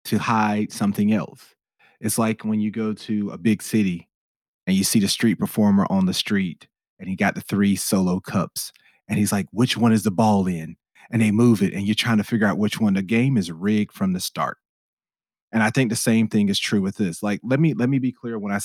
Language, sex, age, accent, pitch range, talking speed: English, male, 30-49, American, 105-165 Hz, 245 wpm